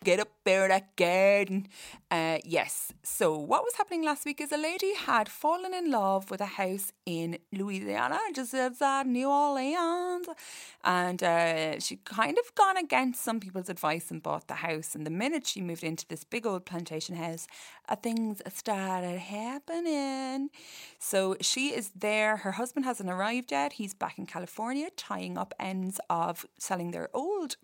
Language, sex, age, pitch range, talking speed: English, female, 30-49, 175-275 Hz, 170 wpm